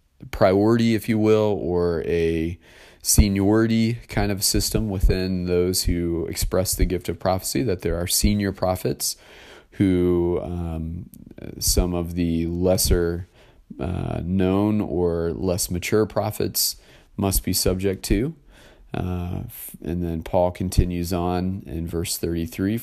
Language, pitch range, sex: English, 85-100 Hz, male